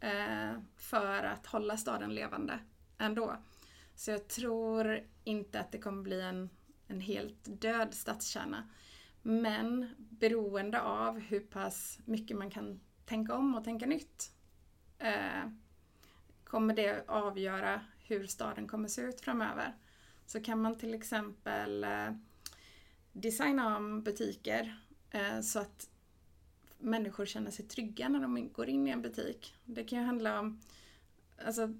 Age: 20-39